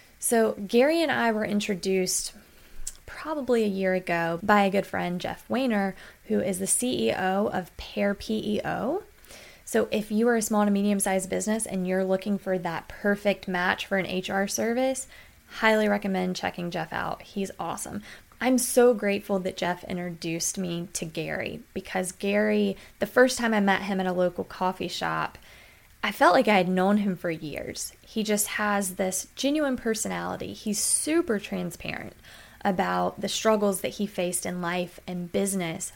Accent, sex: American, female